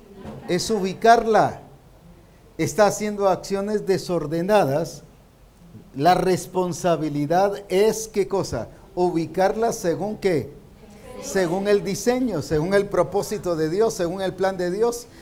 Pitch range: 155-200 Hz